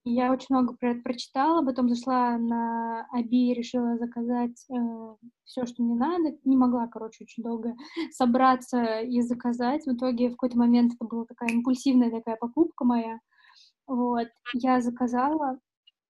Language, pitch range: Russian, 235-265 Hz